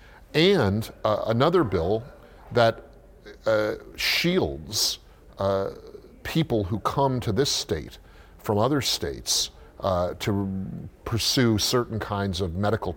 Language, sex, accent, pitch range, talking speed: English, male, American, 100-140 Hz, 110 wpm